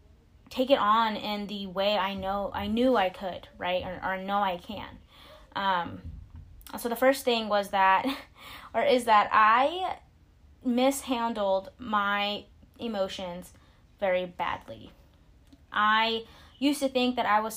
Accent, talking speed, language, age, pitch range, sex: American, 140 wpm, English, 20-39, 190-235 Hz, female